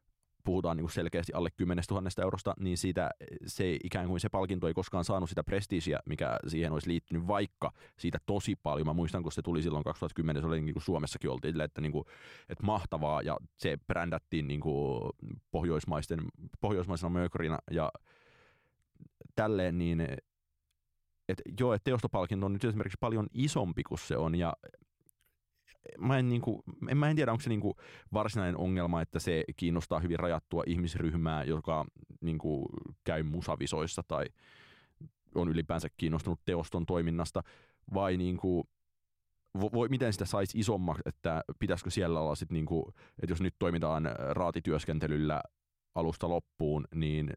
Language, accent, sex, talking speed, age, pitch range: Finnish, native, male, 150 wpm, 20-39, 80-100 Hz